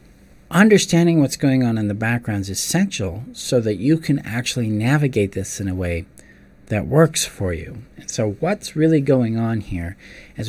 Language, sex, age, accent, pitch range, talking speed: English, male, 40-59, American, 95-130 Hz, 170 wpm